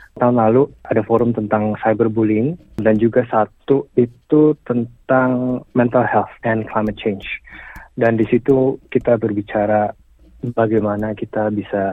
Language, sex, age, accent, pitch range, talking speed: Indonesian, male, 30-49, native, 105-130 Hz, 120 wpm